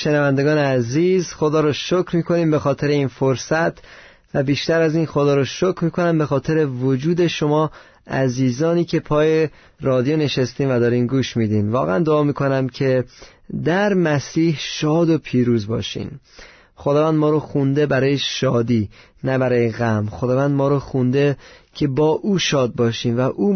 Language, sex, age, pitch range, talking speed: Persian, male, 30-49, 130-160 Hz, 155 wpm